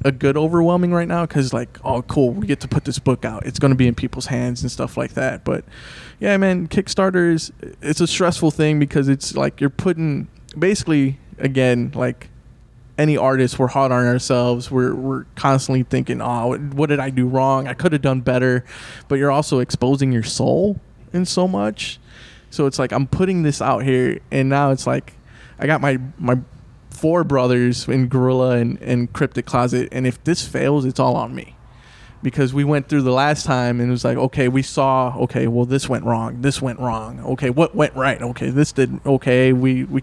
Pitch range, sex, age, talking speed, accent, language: 125-140 Hz, male, 20-39, 205 wpm, American, English